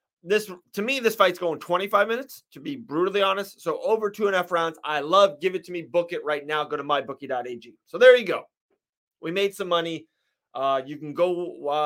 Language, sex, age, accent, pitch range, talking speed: English, male, 30-49, American, 145-195 Hz, 230 wpm